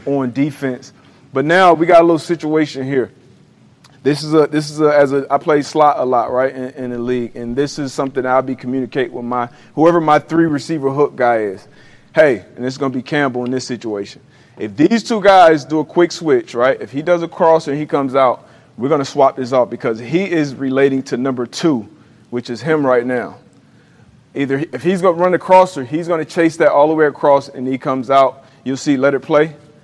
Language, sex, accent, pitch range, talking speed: English, male, American, 135-165 Hz, 235 wpm